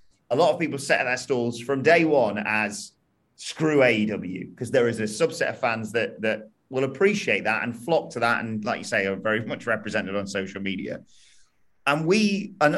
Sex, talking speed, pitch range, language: male, 205 wpm, 110-160 Hz, English